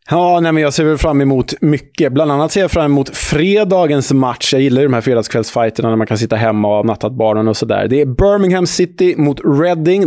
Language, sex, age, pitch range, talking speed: Swedish, male, 20-39, 115-155 Hz, 230 wpm